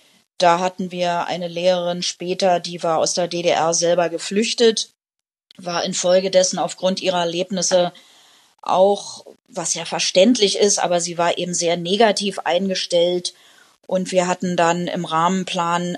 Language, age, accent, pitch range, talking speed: German, 20-39, German, 170-200 Hz, 135 wpm